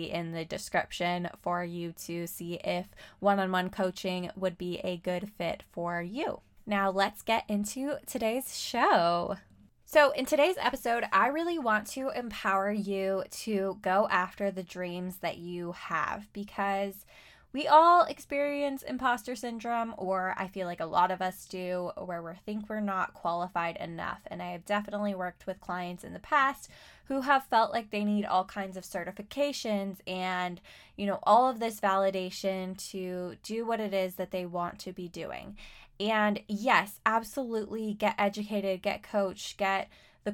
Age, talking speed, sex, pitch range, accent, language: 20-39, 165 wpm, female, 185-225 Hz, American, English